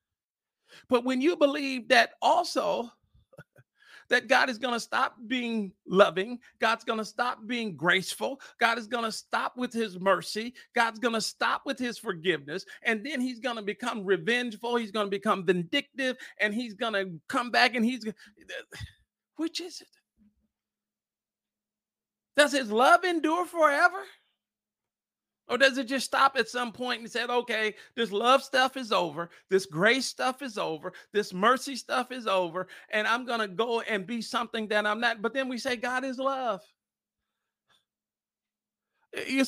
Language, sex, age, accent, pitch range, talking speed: English, male, 40-59, American, 215-260 Hz, 165 wpm